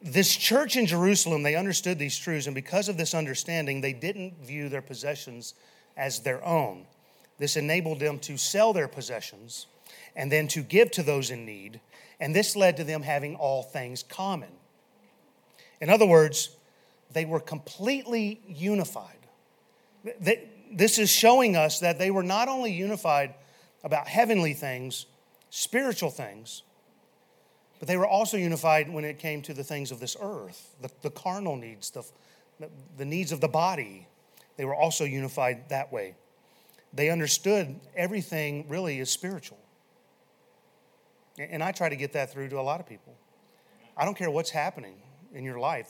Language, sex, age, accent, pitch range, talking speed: English, male, 40-59, American, 140-190 Hz, 160 wpm